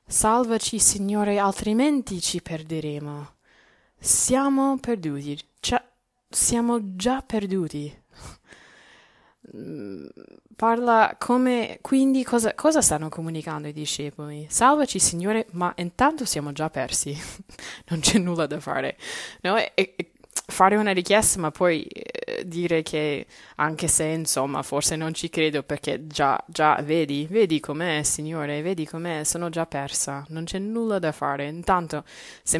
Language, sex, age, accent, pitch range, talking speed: Italian, female, 20-39, native, 150-210 Hz, 120 wpm